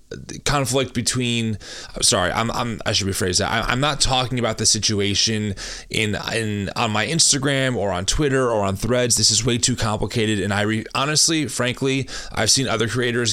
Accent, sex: American, male